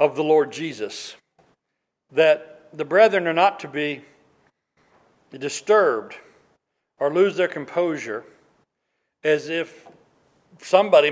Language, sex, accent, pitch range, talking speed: English, male, American, 135-160 Hz, 105 wpm